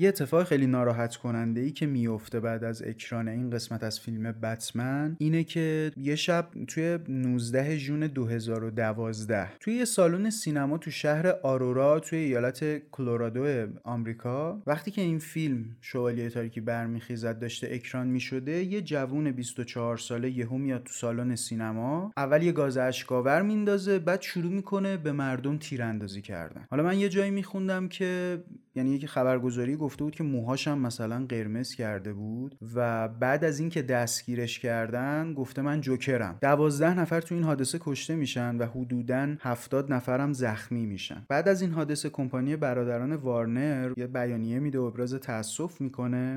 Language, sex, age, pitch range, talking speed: Persian, male, 30-49, 120-155 Hz, 155 wpm